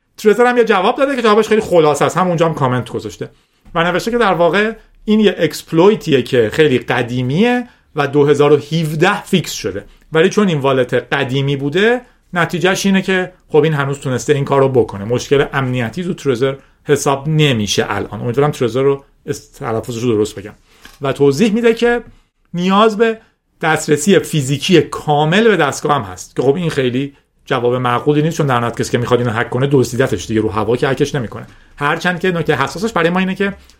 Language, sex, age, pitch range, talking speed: Persian, male, 40-59, 130-185 Hz, 180 wpm